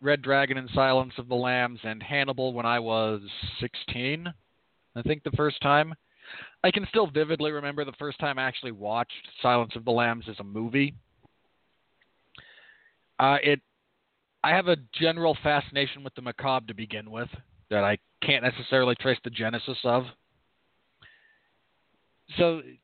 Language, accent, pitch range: English, American, 115-150 Hz